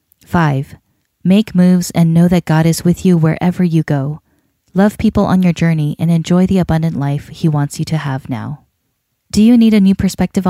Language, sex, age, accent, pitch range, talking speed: English, female, 10-29, American, 155-195 Hz, 200 wpm